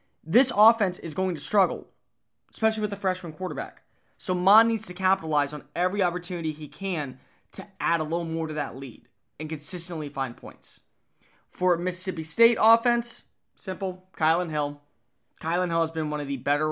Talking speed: 170 wpm